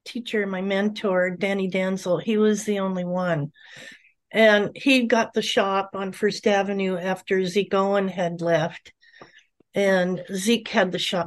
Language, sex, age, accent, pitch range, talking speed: English, female, 50-69, American, 185-220 Hz, 150 wpm